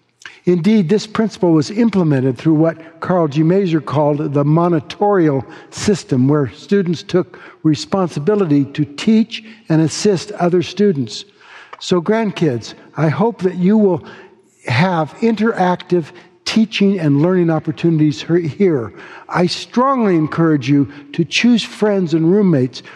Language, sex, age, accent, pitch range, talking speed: English, male, 60-79, American, 145-185 Hz, 125 wpm